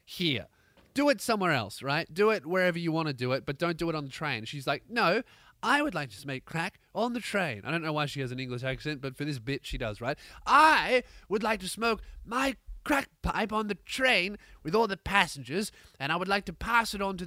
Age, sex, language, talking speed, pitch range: 20-39, male, English, 255 wpm, 145-220 Hz